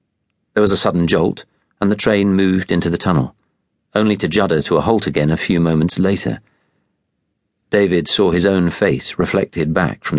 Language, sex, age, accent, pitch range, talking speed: English, male, 40-59, British, 85-120 Hz, 185 wpm